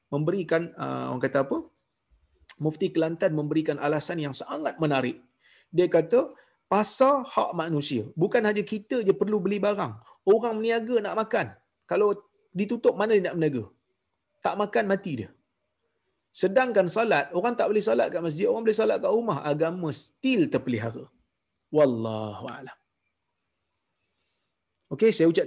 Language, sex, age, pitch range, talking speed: Malayalam, male, 30-49, 135-200 Hz, 135 wpm